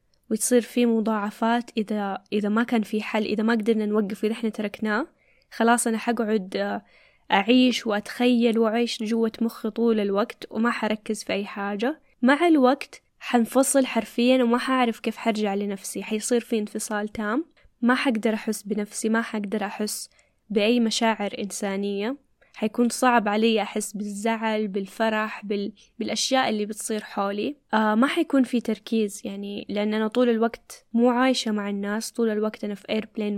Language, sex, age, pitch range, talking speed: Arabic, female, 10-29, 210-235 Hz, 150 wpm